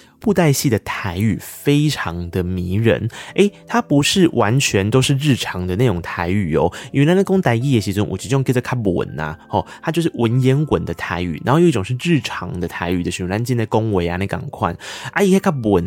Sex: male